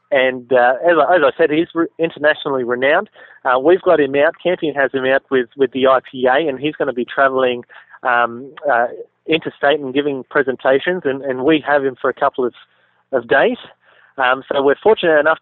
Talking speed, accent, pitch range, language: 200 wpm, Australian, 130-160 Hz, English